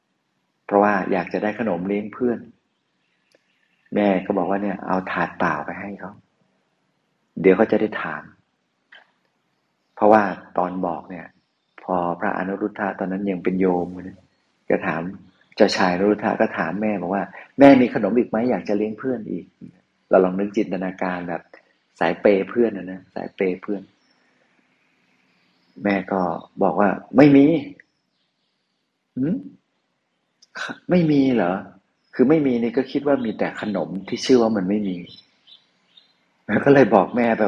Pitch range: 95-115 Hz